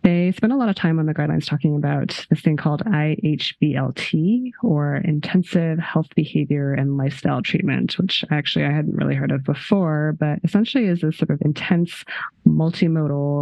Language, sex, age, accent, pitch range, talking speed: English, female, 20-39, American, 150-185 Hz, 170 wpm